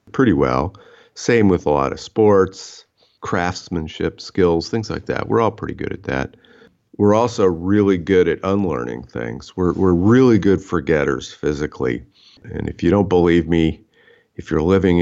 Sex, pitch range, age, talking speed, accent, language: male, 80-95 Hz, 50-69, 165 wpm, American, English